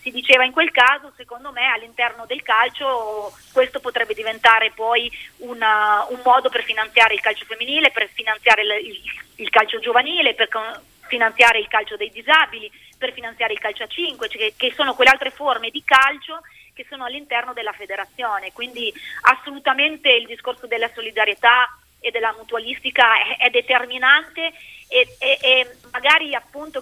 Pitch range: 230-275 Hz